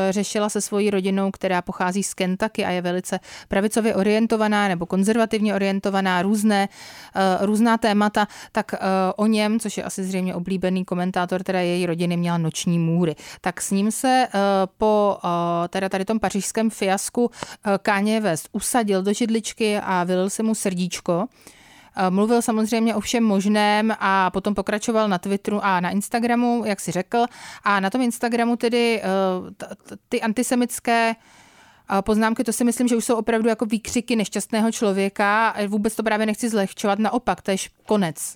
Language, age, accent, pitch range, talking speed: Czech, 30-49, native, 190-220 Hz, 165 wpm